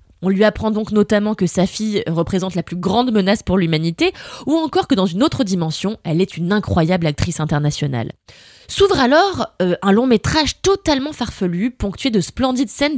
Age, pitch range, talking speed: 20-39, 180-260 Hz, 185 wpm